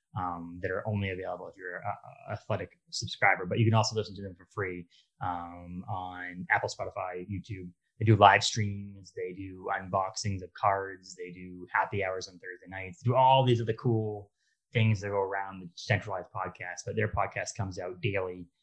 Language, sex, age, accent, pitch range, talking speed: English, male, 20-39, American, 90-110 Hz, 190 wpm